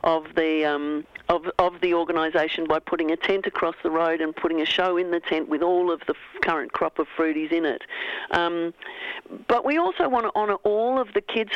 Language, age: English, 50-69